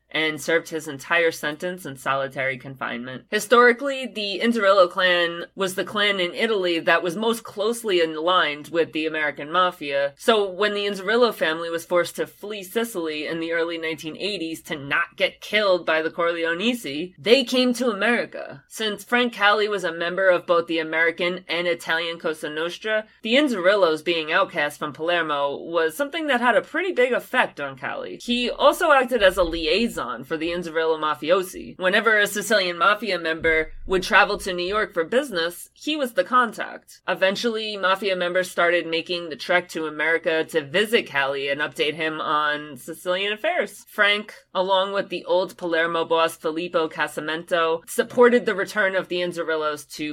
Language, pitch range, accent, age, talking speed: English, 160-210 Hz, American, 30-49, 170 wpm